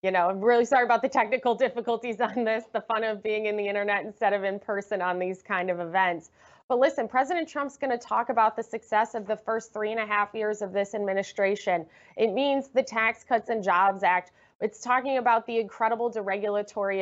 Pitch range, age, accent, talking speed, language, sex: 200-255 Hz, 20-39, American, 220 wpm, English, female